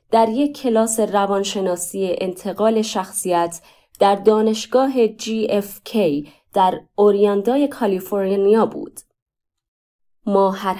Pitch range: 165-220 Hz